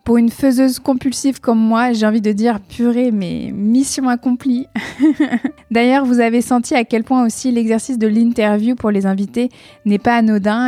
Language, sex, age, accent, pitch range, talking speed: French, female, 20-39, French, 200-245 Hz, 185 wpm